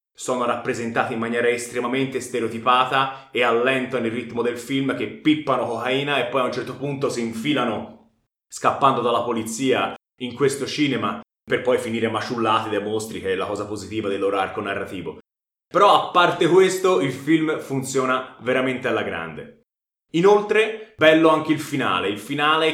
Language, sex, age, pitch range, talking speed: Italian, male, 20-39, 120-155 Hz, 160 wpm